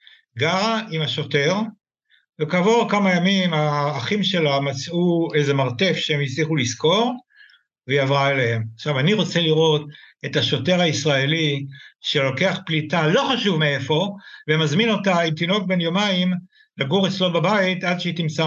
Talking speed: 135 wpm